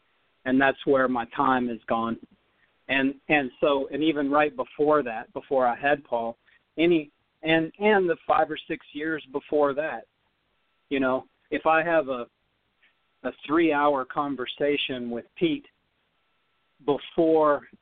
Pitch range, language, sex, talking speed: 130-150 Hz, English, male, 140 wpm